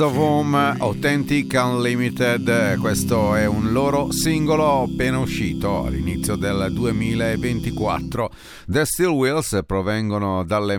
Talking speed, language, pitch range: 100 wpm, Italian, 95-140 Hz